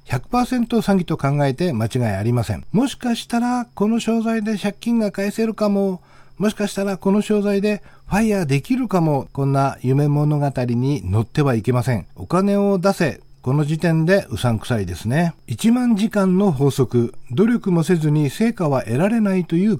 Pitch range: 135-205 Hz